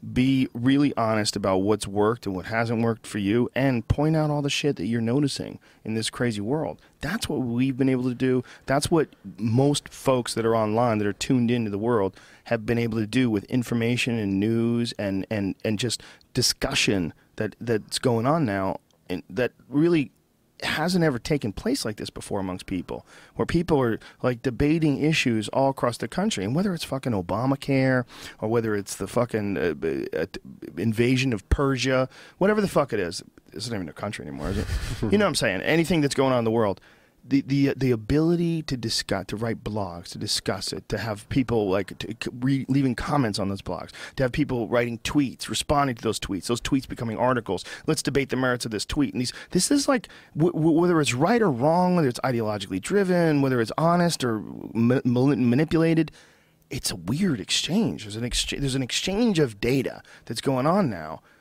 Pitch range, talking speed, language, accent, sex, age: 110-145 Hz, 205 wpm, English, American, male, 40-59